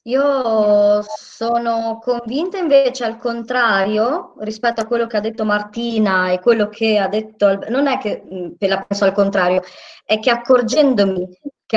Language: Italian